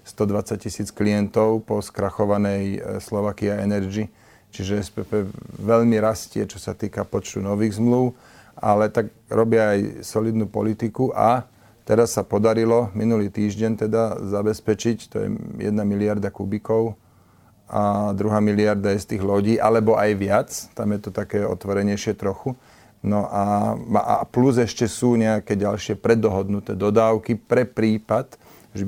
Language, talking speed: Slovak, 135 wpm